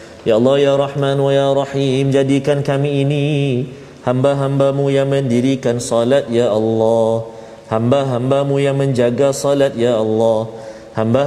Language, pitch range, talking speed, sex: Malayalam, 120-145 Hz, 220 wpm, male